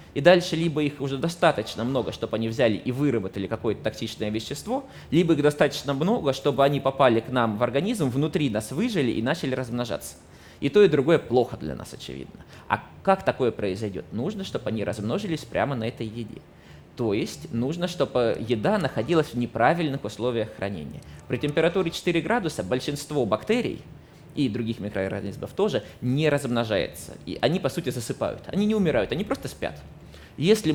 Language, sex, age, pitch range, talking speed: Russian, male, 20-39, 110-150 Hz, 170 wpm